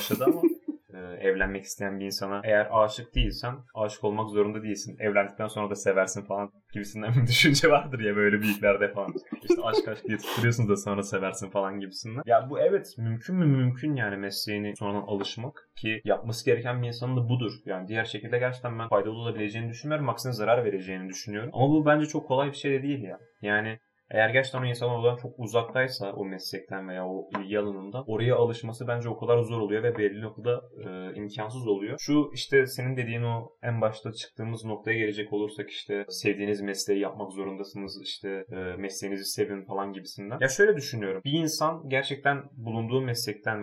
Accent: native